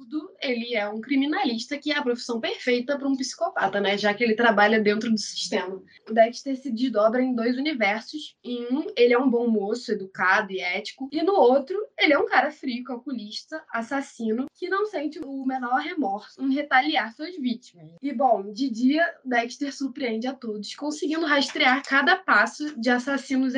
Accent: Brazilian